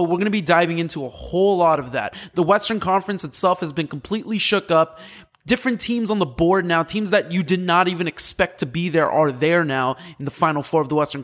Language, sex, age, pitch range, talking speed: English, male, 20-39, 145-180 Hz, 250 wpm